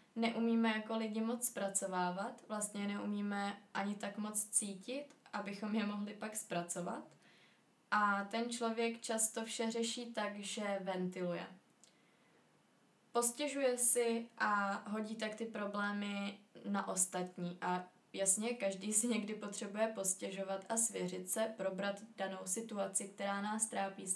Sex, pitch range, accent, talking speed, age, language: female, 195-220 Hz, native, 125 wpm, 20-39, Czech